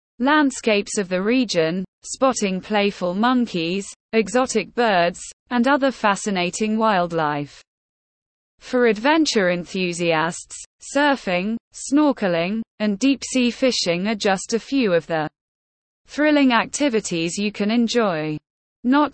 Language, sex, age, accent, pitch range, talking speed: English, female, 20-39, British, 180-250 Hz, 105 wpm